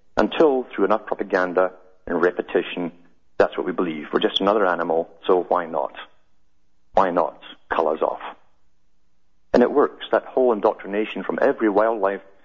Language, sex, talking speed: English, male, 150 wpm